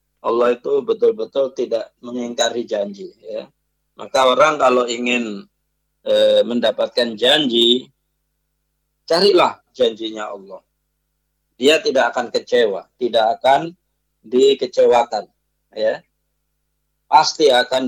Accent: Indonesian